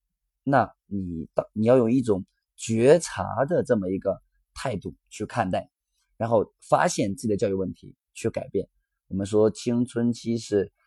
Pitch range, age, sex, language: 100-130 Hz, 20-39, male, Chinese